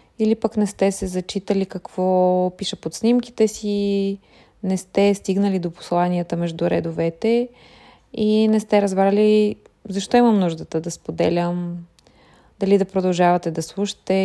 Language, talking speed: Bulgarian, 135 wpm